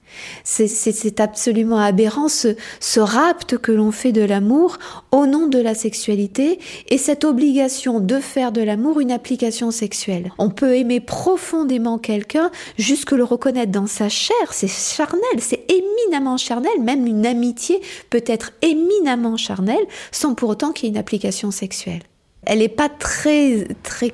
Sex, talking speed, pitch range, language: female, 160 wpm, 200-270 Hz, French